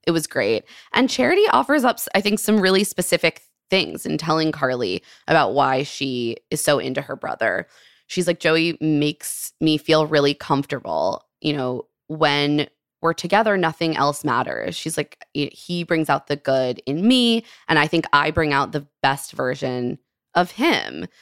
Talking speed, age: 170 wpm, 20-39